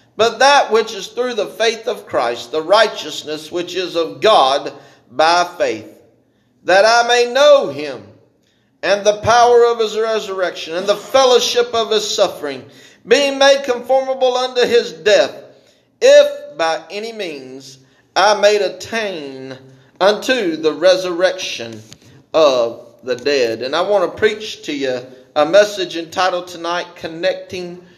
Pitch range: 150-210 Hz